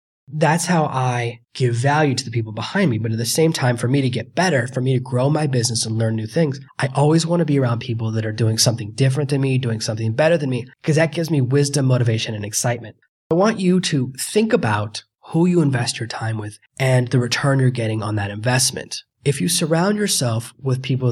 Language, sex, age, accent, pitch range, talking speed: English, male, 20-39, American, 115-145 Hz, 235 wpm